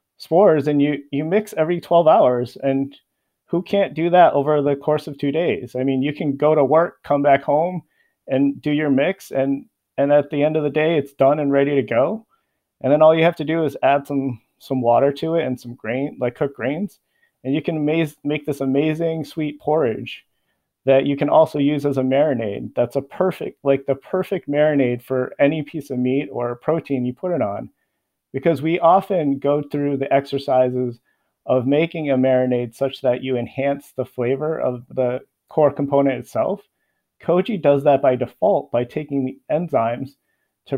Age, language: 30-49, English